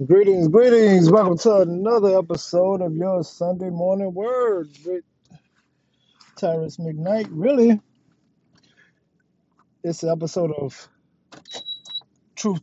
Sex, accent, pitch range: male, American, 160-205 Hz